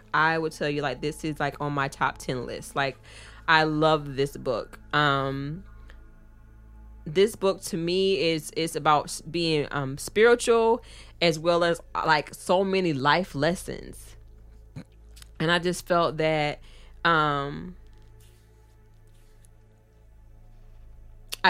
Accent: American